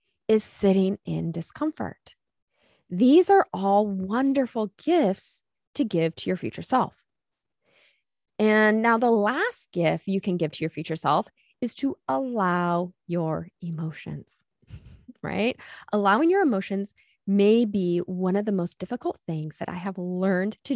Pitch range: 175-240 Hz